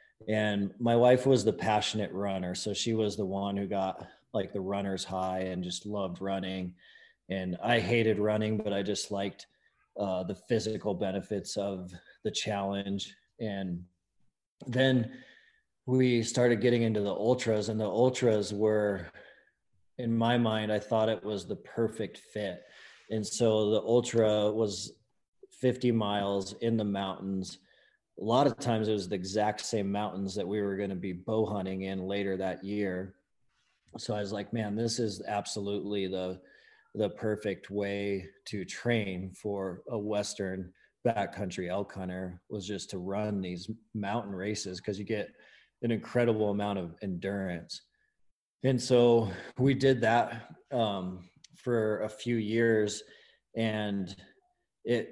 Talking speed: 150 wpm